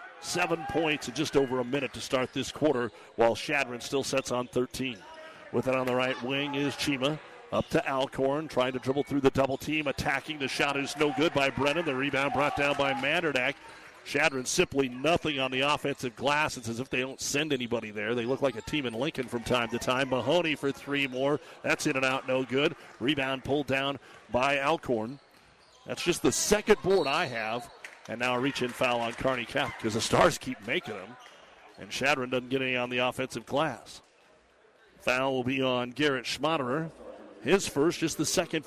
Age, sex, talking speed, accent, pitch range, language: 50-69, male, 205 wpm, American, 125-145 Hz, English